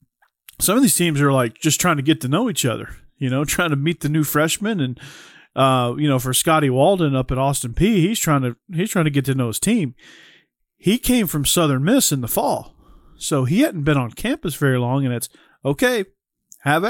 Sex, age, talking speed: male, 40-59, 225 wpm